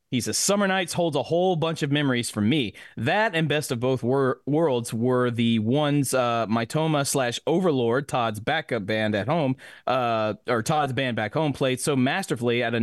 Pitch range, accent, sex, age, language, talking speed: 125-170 Hz, American, male, 30-49, English, 190 wpm